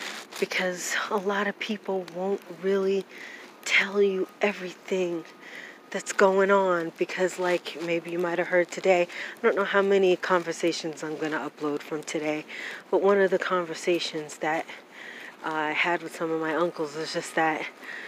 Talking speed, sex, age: 165 wpm, female, 30-49